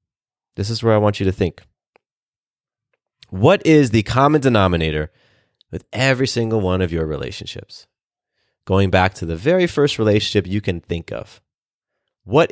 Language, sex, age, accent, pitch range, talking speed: English, male, 30-49, American, 95-125 Hz, 155 wpm